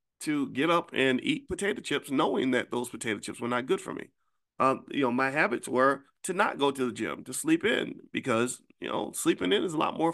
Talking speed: 245 wpm